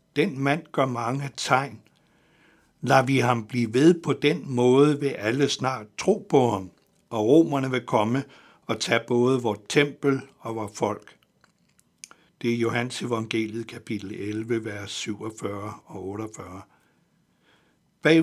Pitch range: 115-135 Hz